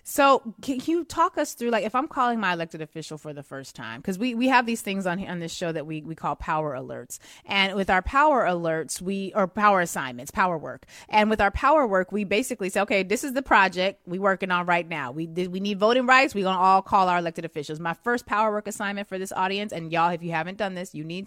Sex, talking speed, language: female, 260 wpm, English